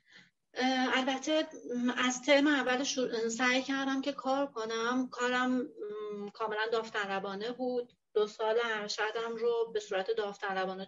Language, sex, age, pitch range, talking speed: Persian, female, 30-49, 195-250 Hz, 115 wpm